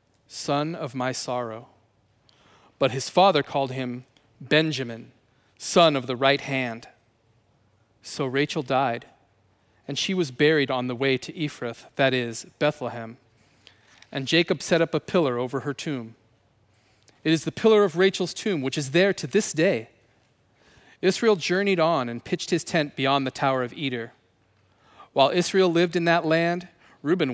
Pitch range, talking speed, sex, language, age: 115-155 Hz, 155 wpm, male, English, 40-59